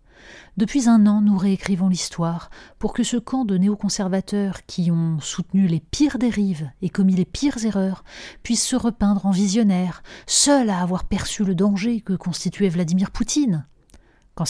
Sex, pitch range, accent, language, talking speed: female, 175-225 Hz, French, French, 160 wpm